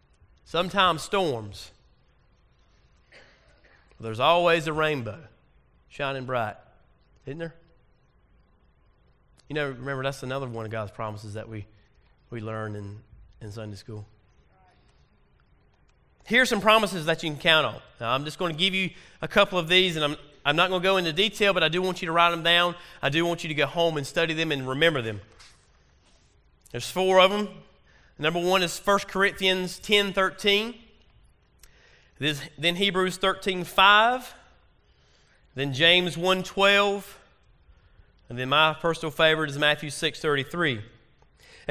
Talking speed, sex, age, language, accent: 150 wpm, male, 30-49, English, American